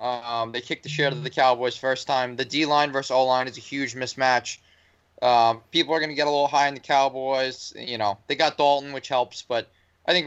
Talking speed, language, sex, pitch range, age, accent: 235 wpm, English, male, 115-150 Hz, 20-39, American